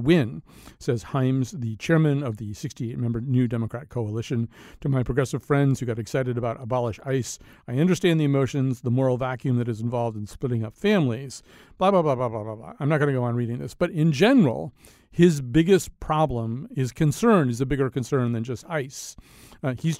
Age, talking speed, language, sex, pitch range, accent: 40-59, 200 wpm, English, male, 120-150 Hz, American